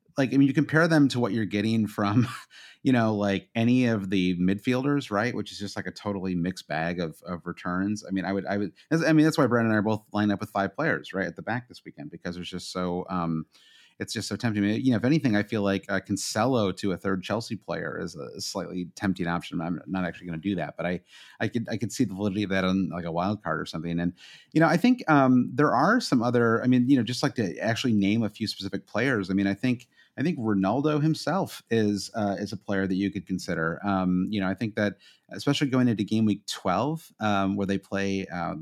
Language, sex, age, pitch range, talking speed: English, male, 30-49, 95-115 Hz, 260 wpm